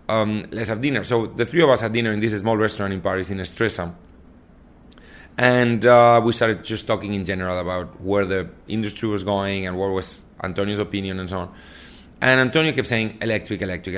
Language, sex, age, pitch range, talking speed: English, male, 30-49, 95-115 Hz, 200 wpm